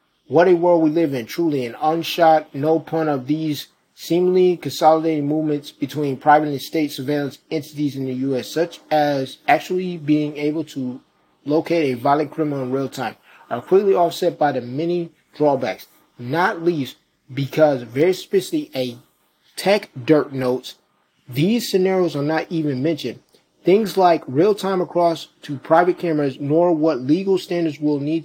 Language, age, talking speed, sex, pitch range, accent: English, 30-49, 155 wpm, male, 140-165 Hz, American